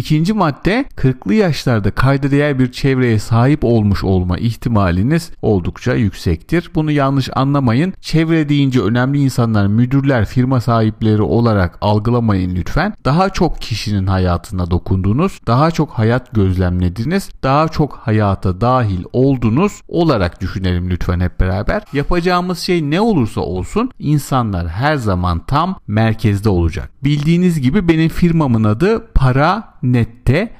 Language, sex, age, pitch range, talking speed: Turkish, male, 40-59, 100-145 Hz, 125 wpm